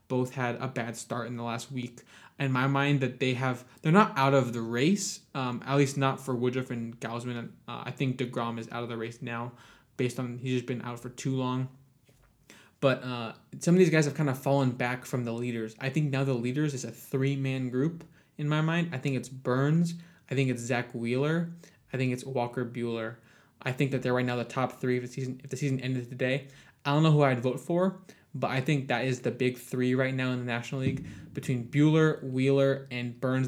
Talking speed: 235 wpm